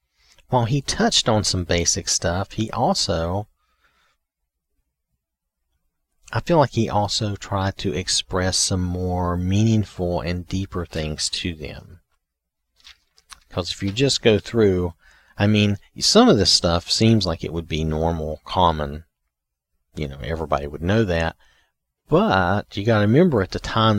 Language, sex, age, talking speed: English, male, 40-59, 145 wpm